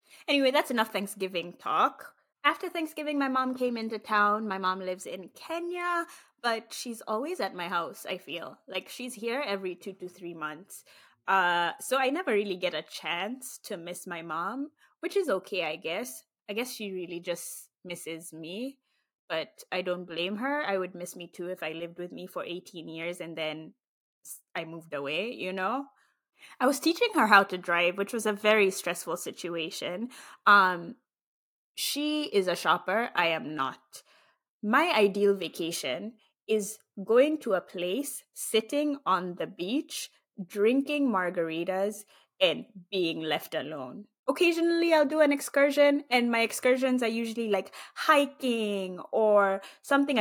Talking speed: 160 wpm